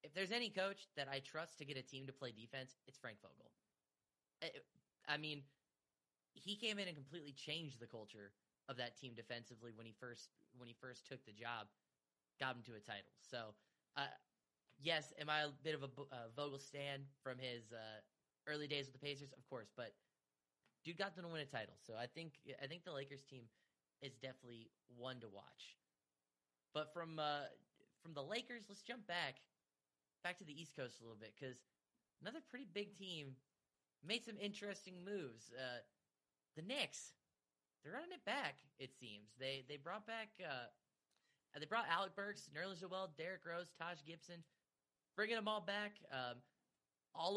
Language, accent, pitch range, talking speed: English, American, 120-170 Hz, 185 wpm